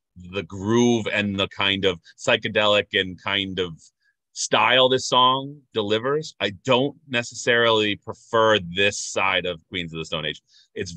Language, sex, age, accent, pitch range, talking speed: English, male, 30-49, American, 85-110 Hz, 150 wpm